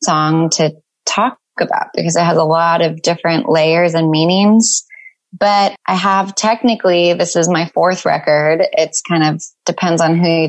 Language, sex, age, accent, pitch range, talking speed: English, female, 20-39, American, 160-185 Hz, 170 wpm